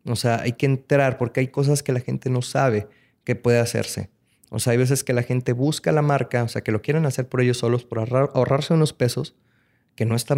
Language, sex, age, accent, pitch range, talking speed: Spanish, male, 30-49, Mexican, 110-135 Hz, 250 wpm